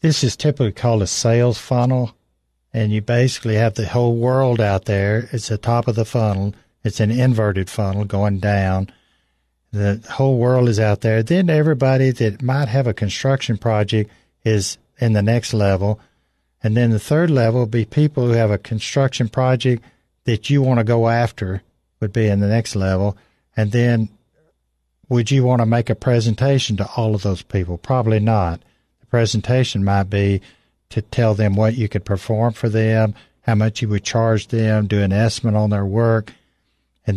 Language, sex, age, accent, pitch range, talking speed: English, male, 50-69, American, 100-120 Hz, 185 wpm